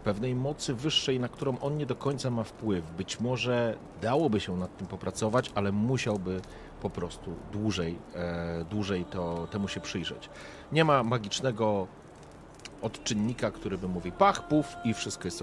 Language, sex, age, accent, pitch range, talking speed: Polish, male, 40-59, native, 90-120 Hz, 150 wpm